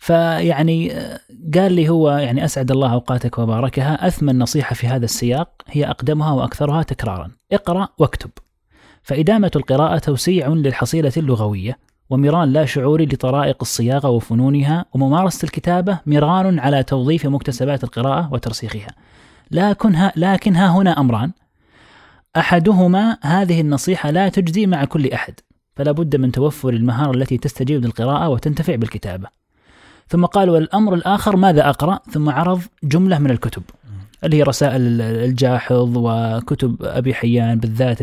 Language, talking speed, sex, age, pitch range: Arabic, 125 wpm, male, 30-49, 120-155 Hz